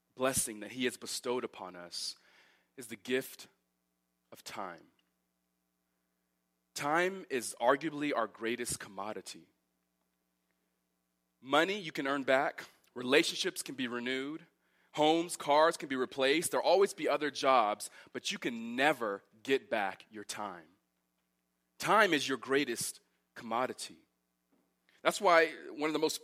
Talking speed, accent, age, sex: 130 wpm, American, 30-49, male